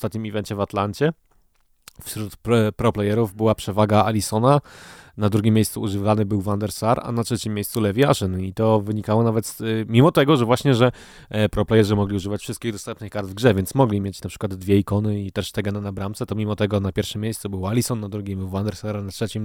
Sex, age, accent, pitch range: male, 20-39, native, 105-120 Hz